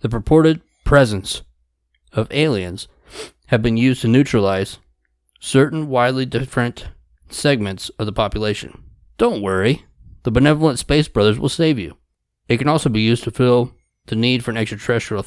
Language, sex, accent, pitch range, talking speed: English, male, American, 105-130 Hz, 150 wpm